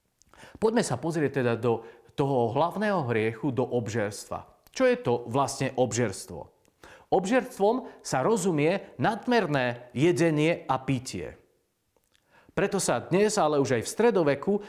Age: 40-59